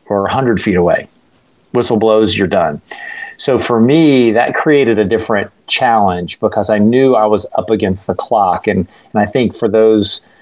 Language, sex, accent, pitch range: English, male, American, 100-120 Hz